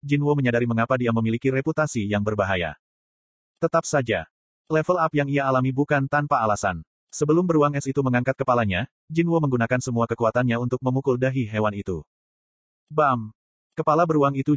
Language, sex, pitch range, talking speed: Indonesian, male, 120-155 Hz, 150 wpm